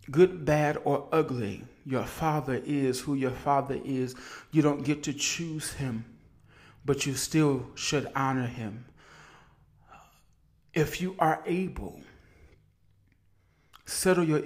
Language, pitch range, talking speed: English, 130-155 Hz, 120 wpm